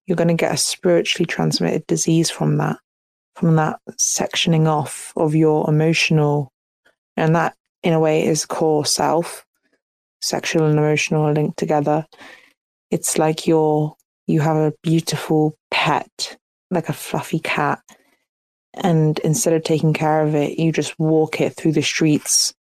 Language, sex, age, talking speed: English, female, 20-39, 150 wpm